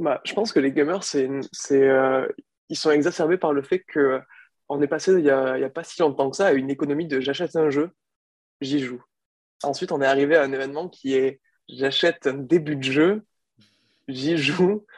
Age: 20-39